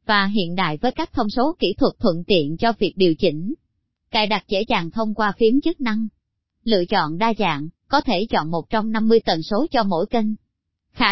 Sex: male